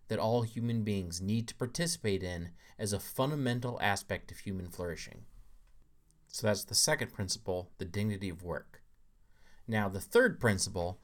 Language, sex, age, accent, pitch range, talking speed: English, male, 30-49, American, 95-125 Hz, 150 wpm